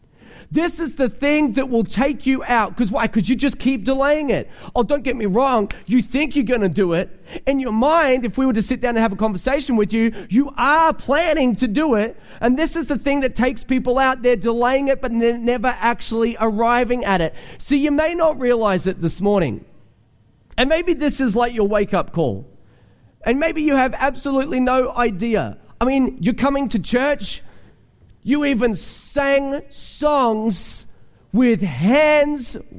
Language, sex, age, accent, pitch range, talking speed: English, male, 40-59, Australian, 210-280 Hz, 190 wpm